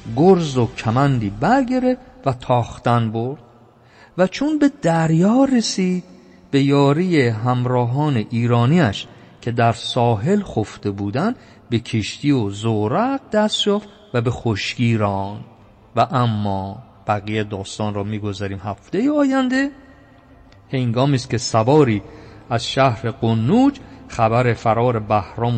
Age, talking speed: 50-69, 115 wpm